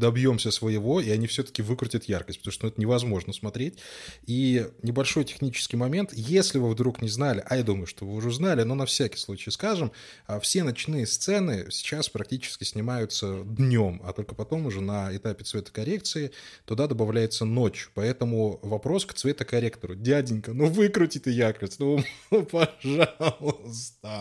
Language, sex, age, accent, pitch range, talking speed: Russian, male, 20-39, native, 110-170 Hz, 150 wpm